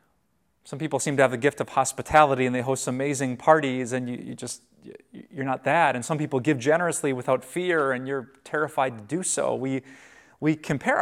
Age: 30-49